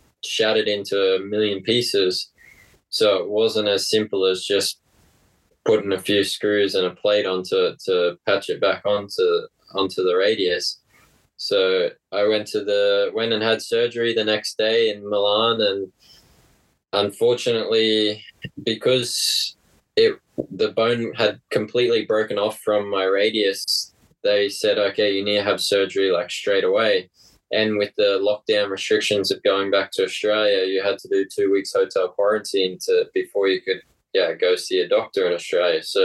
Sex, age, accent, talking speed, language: male, 20-39, Australian, 160 wpm, English